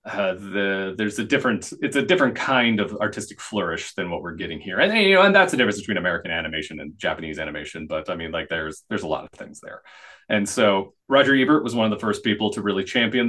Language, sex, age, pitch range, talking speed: English, male, 30-49, 95-120 Hz, 245 wpm